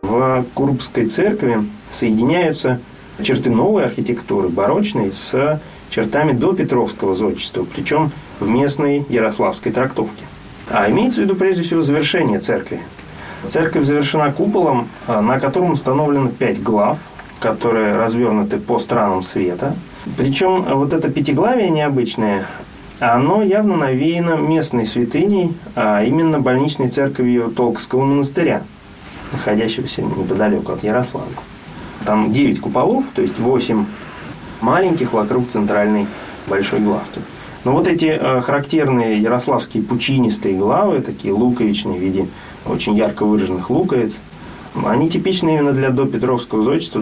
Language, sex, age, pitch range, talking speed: Russian, male, 30-49, 115-155 Hz, 115 wpm